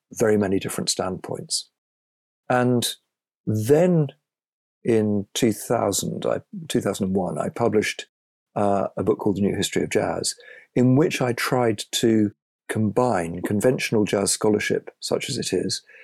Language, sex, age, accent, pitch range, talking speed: English, male, 50-69, British, 100-125 Hz, 125 wpm